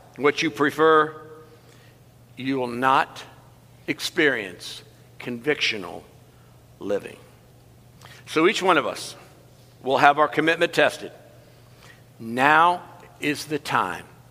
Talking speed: 95 wpm